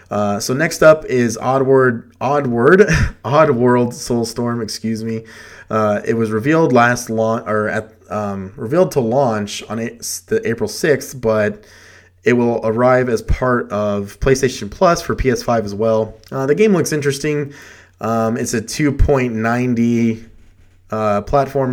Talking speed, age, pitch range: 145 wpm, 20-39, 105-125 Hz